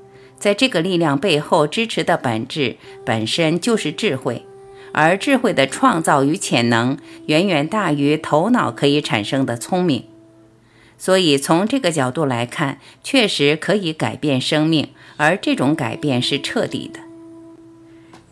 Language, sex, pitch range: Chinese, female, 135-195 Hz